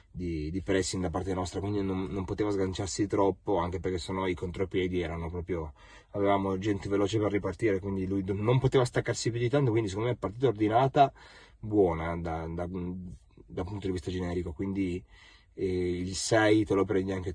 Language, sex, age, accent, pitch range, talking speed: Italian, male, 30-49, native, 95-120 Hz, 185 wpm